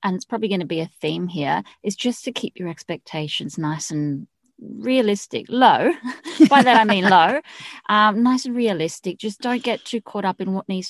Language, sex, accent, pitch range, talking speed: English, female, Australian, 170-230 Hz, 205 wpm